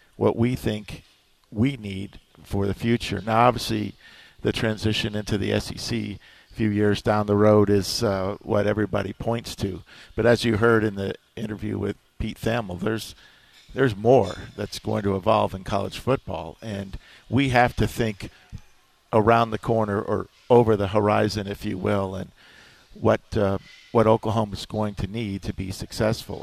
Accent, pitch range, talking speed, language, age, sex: American, 105-115 Hz, 165 wpm, English, 50-69, male